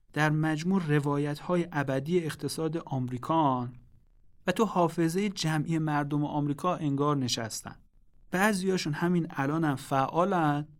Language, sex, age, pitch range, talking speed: Persian, male, 30-49, 135-165 Hz, 115 wpm